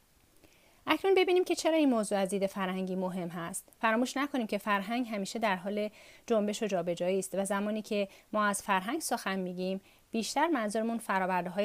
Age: 30-49